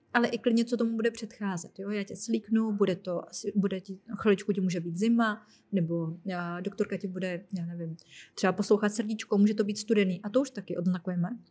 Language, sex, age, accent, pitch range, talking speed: Czech, female, 30-49, native, 190-225 Hz, 195 wpm